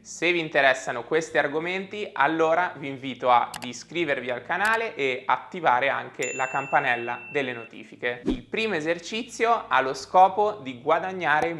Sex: male